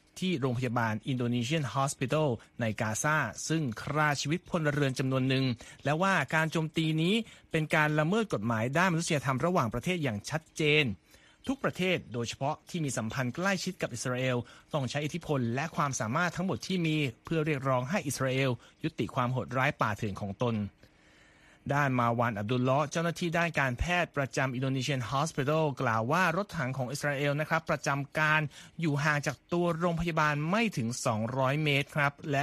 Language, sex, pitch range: Thai, male, 125-155 Hz